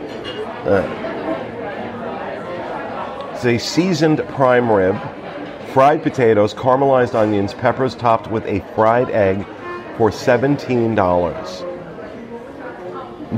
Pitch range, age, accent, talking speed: 110-135 Hz, 40-59, American, 80 wpm